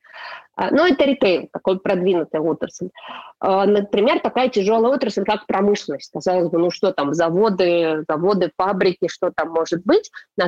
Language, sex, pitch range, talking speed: Russian, female, 180-215 Hz, 150 wpm